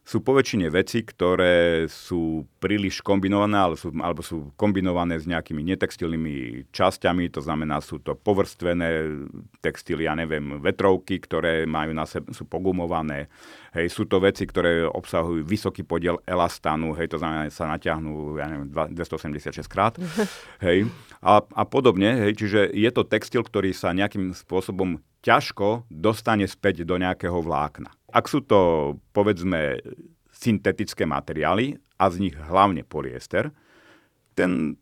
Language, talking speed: Slovak, 140 wpm